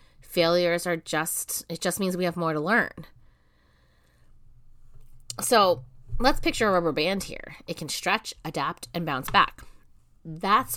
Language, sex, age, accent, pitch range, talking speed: English, female, 30-49, American, 160-210 Hz, 145 wpm